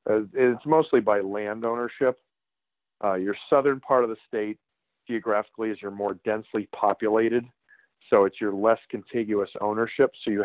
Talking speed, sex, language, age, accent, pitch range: 155 wpm, male, English, 40-59, American, 100-110 Hz